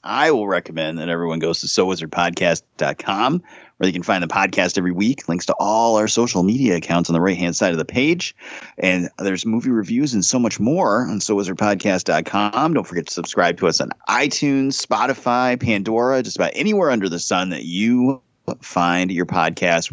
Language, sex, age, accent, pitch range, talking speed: English, male, 30-49, American, 90-115 Hz, 185 wpm